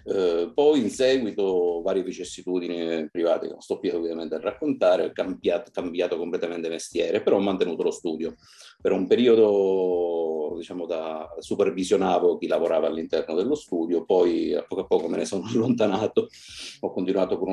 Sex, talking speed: male, 145 wpm